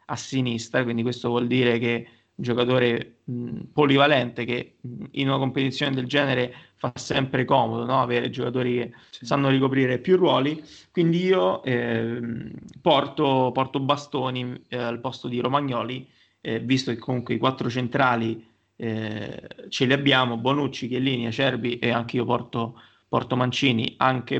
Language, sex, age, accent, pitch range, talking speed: Italian, male, 20-39, native, 120-140 Hz, 150 wpm